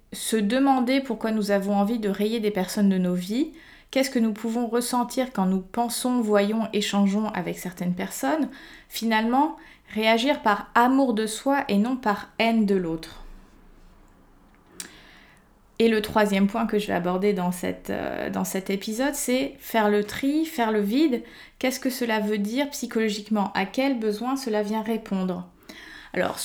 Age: 20-39